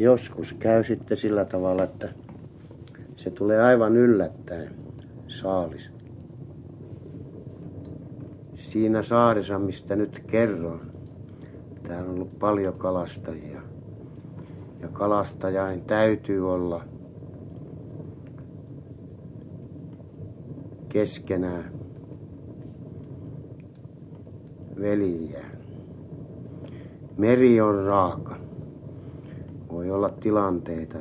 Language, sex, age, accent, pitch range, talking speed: Finnish, male, 60-79, native, 95-135 Hz, 65 wpm